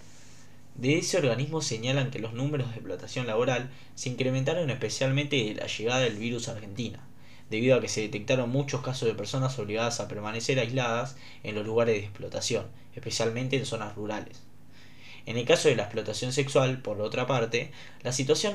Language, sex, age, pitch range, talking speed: Portuguese, male, 10-29, 110-135 Hz, 175 wpm